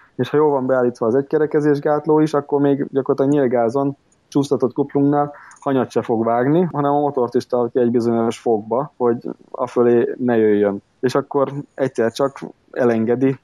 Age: 20-39